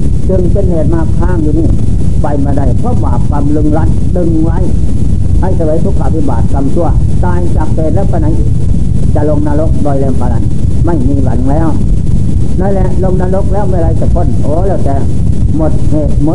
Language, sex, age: Thai, male, 60-79